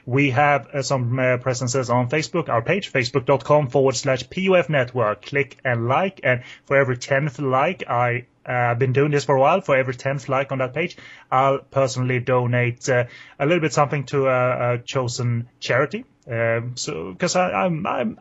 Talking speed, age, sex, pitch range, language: 190 wpm, 30-49, male, 125-145 Hz, English